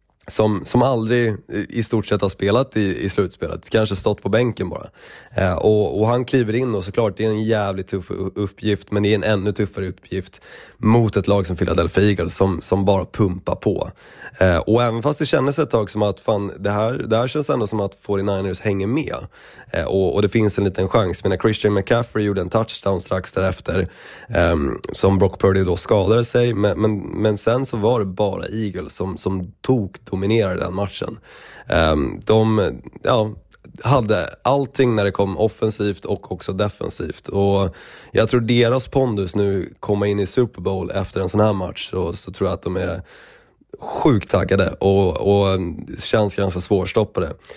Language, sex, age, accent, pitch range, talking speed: Swedish, male, 20-39, native, 95-110 Hz, 190 wpm